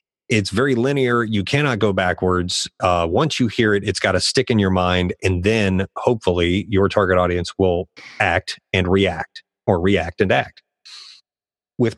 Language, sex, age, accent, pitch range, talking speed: English, male, 30-49, American, 95-130 Hz, 170 wpm